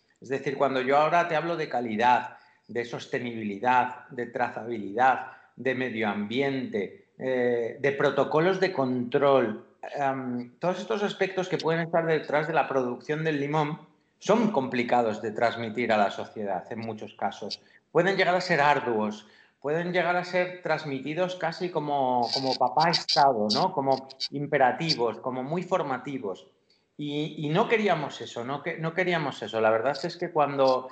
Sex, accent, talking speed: male, Spanish, 150 wpm